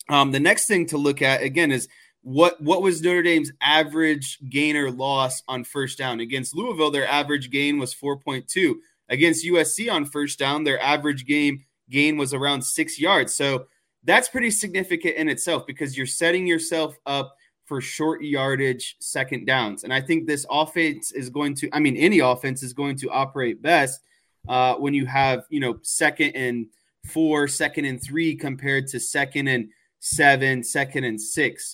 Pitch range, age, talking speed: 135-155 Hz, 20-39, 180 wpm